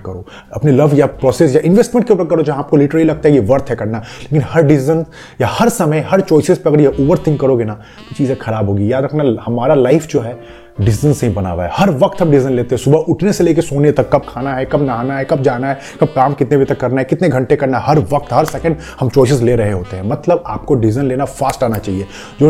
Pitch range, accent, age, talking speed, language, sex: 115-150 Hz, native, 30-49, 255 wpm, Hindi, male